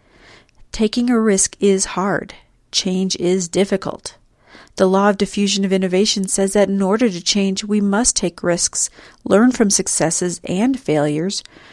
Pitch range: 180-215 Hz